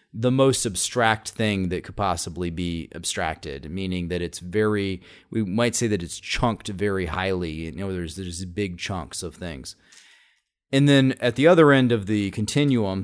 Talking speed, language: 175 wpm, English